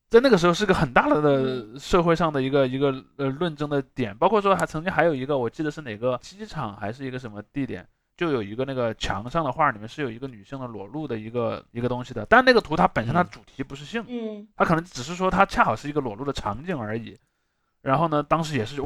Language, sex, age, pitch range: Chinese, male, 20-39, 120-160 Hz